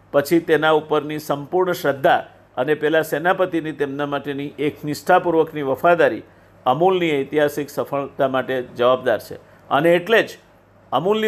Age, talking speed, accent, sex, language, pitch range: 50-69, 85 wpm, native, male, Gujarati, 135-180 Hz